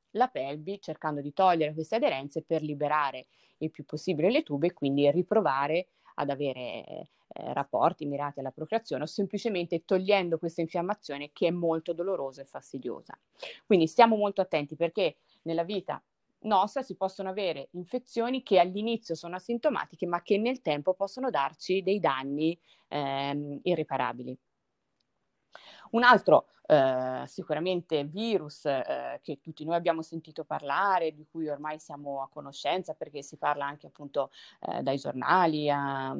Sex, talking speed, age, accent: female, 145 wpm, 30-49, native